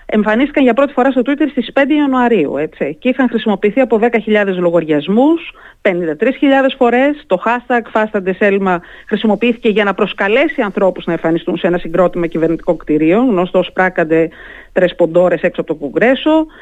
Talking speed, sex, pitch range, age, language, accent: 160 wpm, female, 175-245 Hz, 30-49, Greek, native